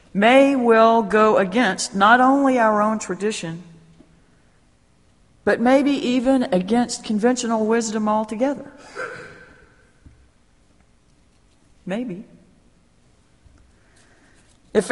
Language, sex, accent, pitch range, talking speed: English, female, American, 160-230 Hz, 70 wpm